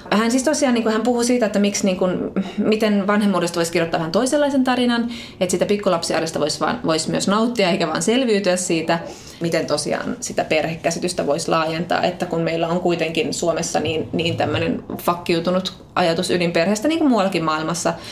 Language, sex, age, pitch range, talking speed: Finnish, female, 20-39, 160-195 Hz, 165 wpm